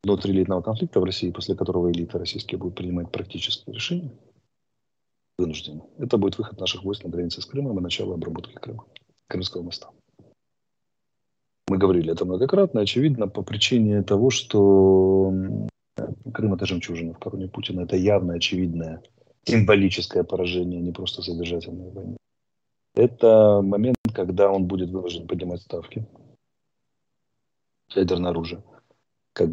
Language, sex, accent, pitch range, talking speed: Russian, male, native, 90-115 Hz, 130 wpm